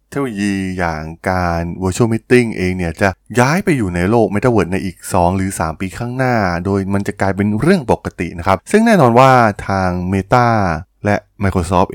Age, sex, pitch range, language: 20-39, male, 90-110 Hz, Thai